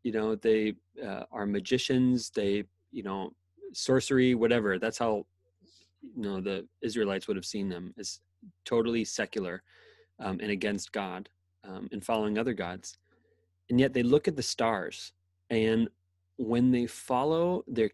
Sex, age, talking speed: male, 30-49, 150 wpm